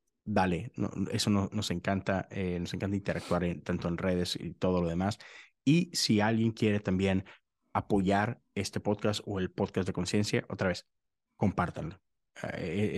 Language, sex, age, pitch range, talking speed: Spanish, male, 30-49, 95-110 Hz, 160 wpm